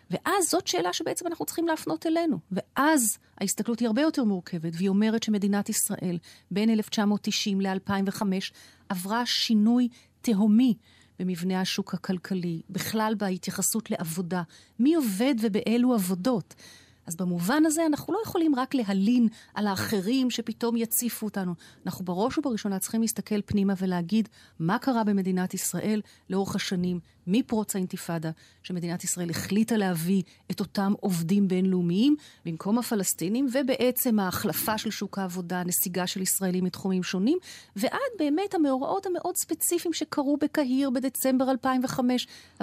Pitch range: 185-245 Hz